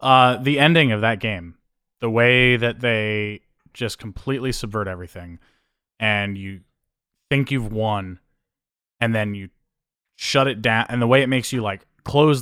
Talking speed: 160 wpm